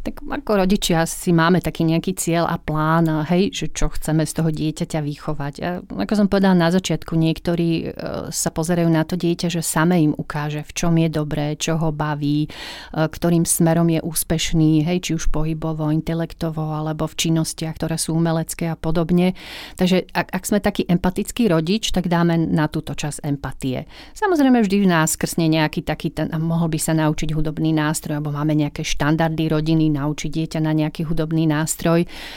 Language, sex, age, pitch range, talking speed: Slovak, female, 40-59, 155-175 Hz, 175 wpm